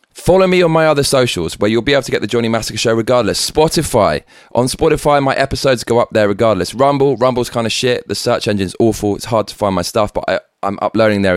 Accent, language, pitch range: British, English, 95-130 Hz